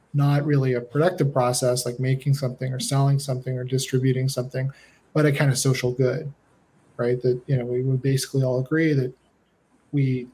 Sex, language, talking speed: male, English, 180 wpm